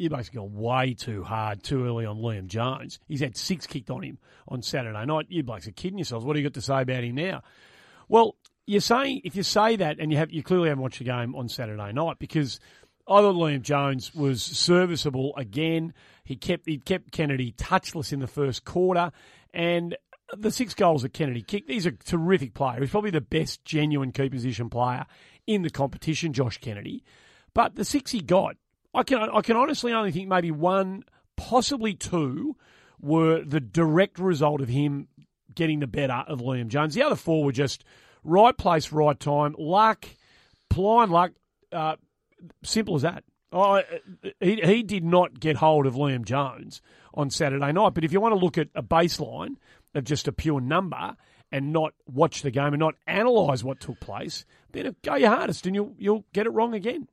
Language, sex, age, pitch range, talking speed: English, male, 40-59, 135-185 Hz, 200 wpm